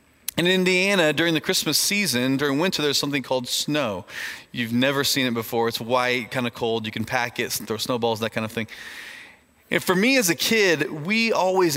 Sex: male